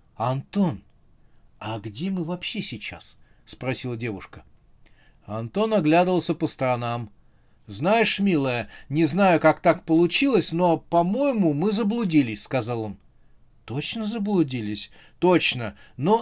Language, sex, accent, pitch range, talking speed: Russian, male, native, 125-175 Hz, 105 wpm